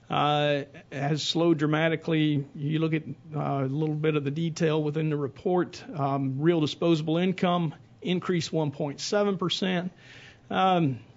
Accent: American